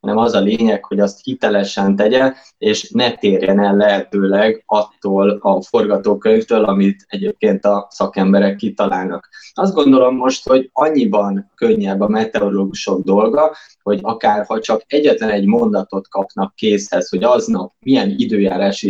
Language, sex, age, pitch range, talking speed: Hungarian, male, 20-39, 100-130 Hz, 135 wpm